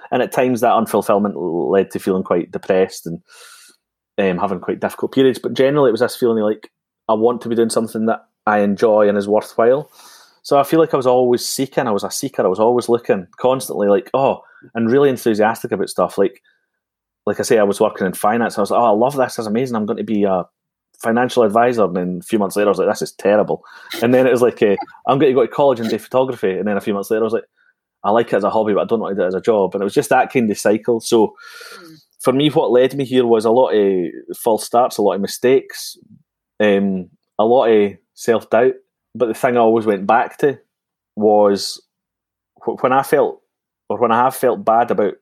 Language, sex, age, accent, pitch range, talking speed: English, male, 30-49, British, 105-130 Hz, 245 wpm